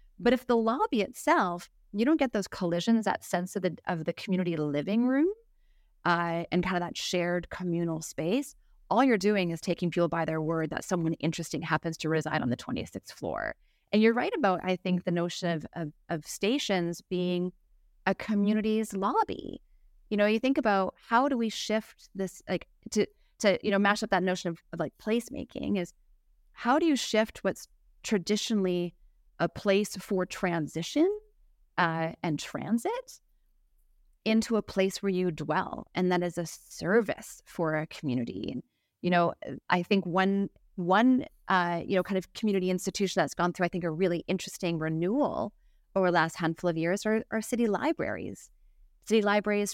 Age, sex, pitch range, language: 30-49, female, 170-215 Hz, English